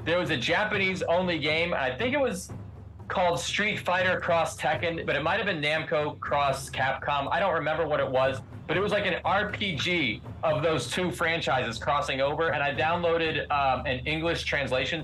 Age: 20-39